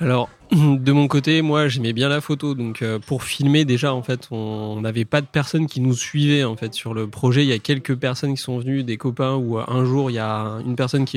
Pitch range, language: 120-145 Hz, French